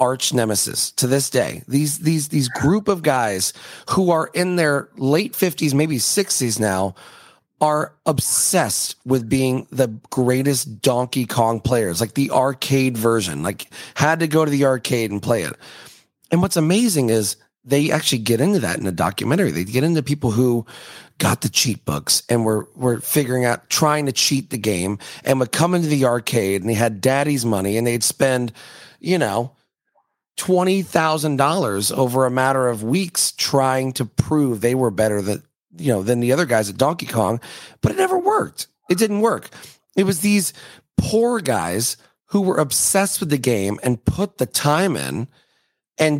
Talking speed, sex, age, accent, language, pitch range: 180 wpm, male, 30-49, American, English, 120-160 Hz